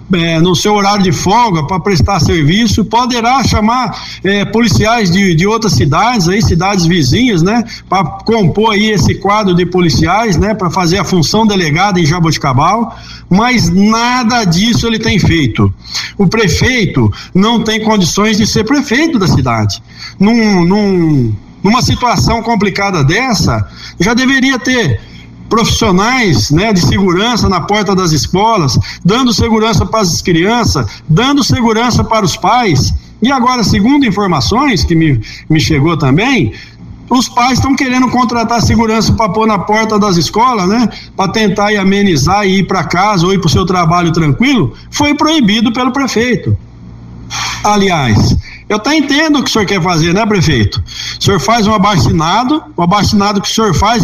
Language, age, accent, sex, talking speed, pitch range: Portuguese, 60-79, Brazilian, male, 160 wpm, 170-230 Hz